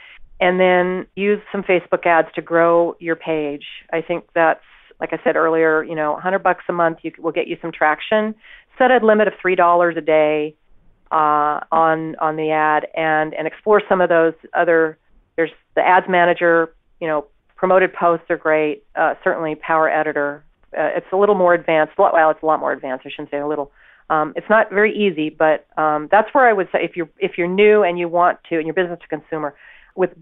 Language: English